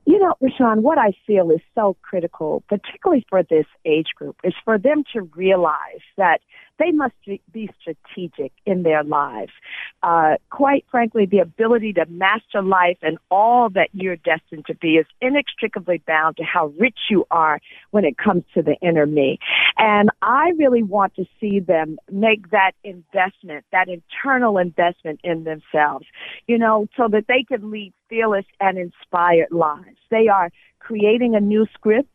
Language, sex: English, female